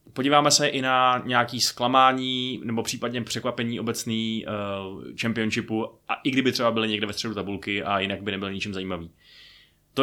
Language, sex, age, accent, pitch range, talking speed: Czech, male, 20-39, native, 110-130 Hz, 170 wpm